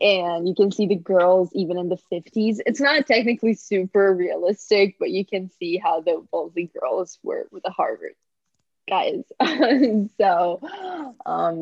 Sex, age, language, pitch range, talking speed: female, 20-39, Romanian, 180-225 Hz, 155 wpm